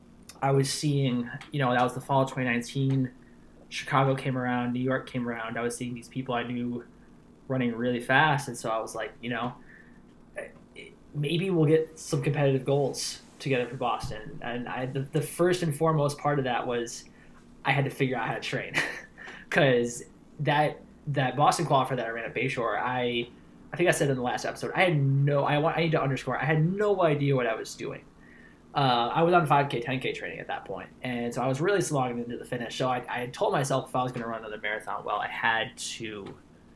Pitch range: 120-145 Hz